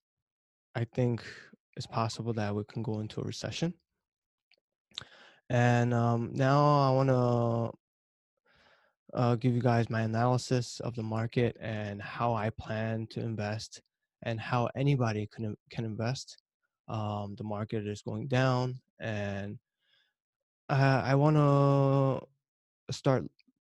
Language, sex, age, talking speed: English, male, 20-39, 120 wpm